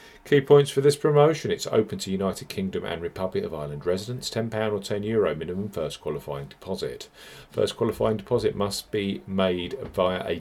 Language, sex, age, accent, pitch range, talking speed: English, male, 40-59, British, 95-125 Hz, 175 wpm